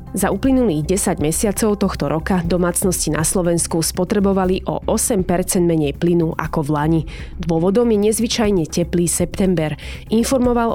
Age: 20-39